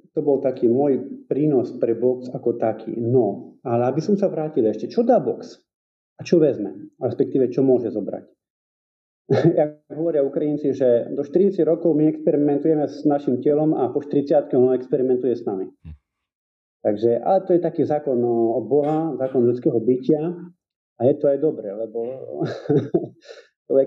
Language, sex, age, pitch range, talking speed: Slovak, male, 40-59, 115-160 Hz, 165 wpm